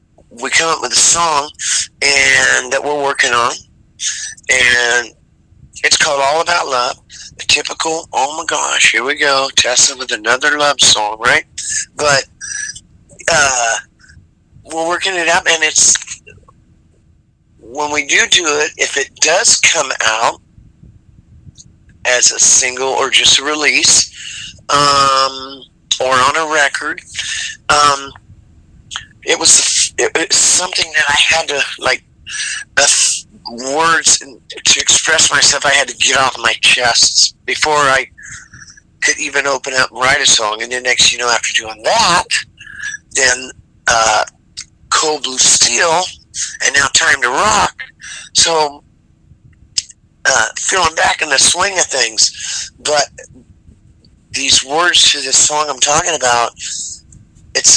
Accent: American